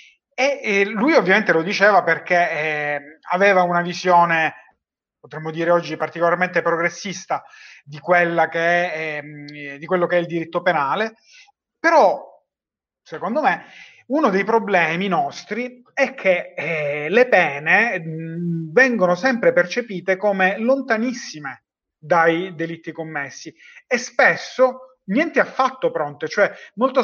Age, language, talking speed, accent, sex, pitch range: 30-49, Italian, 110 wpm, native, male, 165-240 Hz